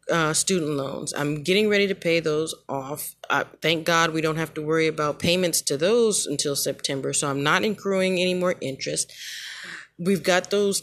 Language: English